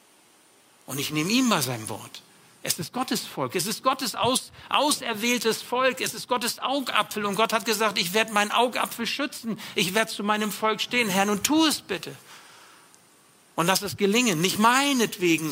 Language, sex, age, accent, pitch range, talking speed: German, male, 60-79, German, 155-210 Hz, 180 wpm